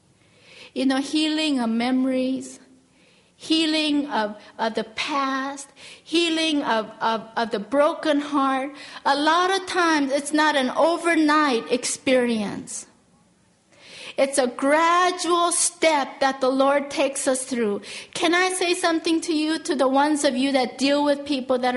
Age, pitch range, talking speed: 50-69, 265-335 Hz, 145 wpm